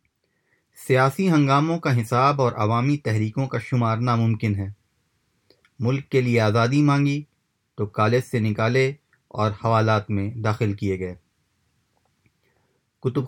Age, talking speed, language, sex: 30-49, 120 wpm, Urdu, male